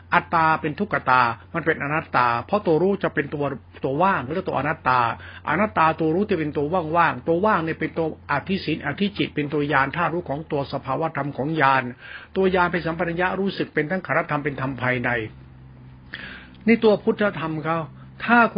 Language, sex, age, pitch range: Thai, male, 60-79, 140-180 Hz